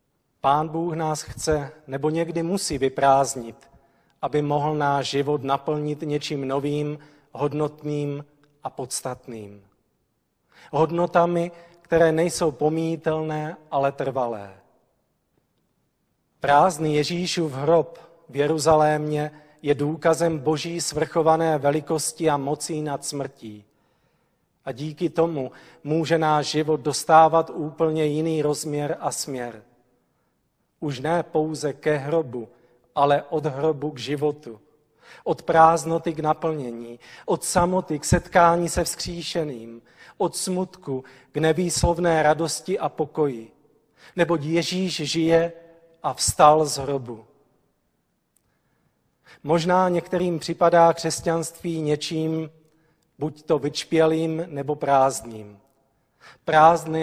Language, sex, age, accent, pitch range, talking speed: Czech, male, 40-59, native, 140-165 Hz, 100 wpm